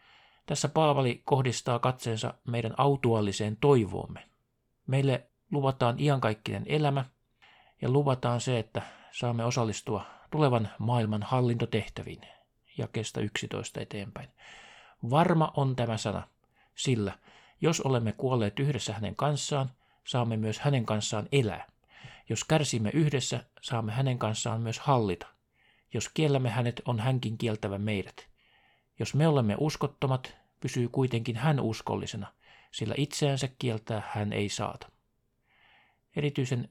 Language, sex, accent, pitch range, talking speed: Finnish, male, native, 110-135 Hz, 115 wpm